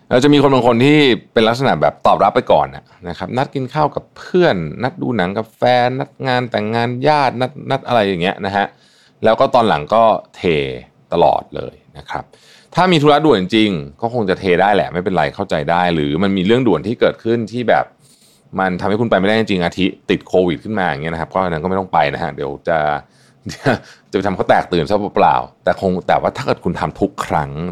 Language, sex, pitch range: Thai, male, 90-125 Hz